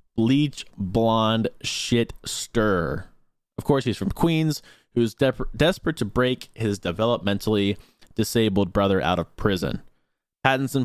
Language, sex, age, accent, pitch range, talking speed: English, male, 20-39, American, 100-130 Hz, 115 wpm